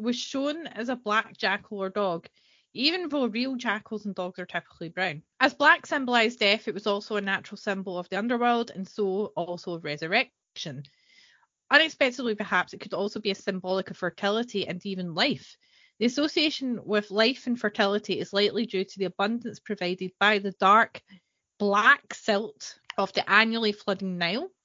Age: 30-49